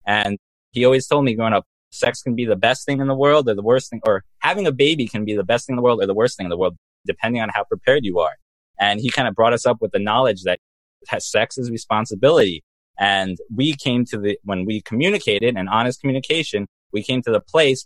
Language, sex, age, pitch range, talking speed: English, male, 20-39, 105-135 Hz, 250 wpm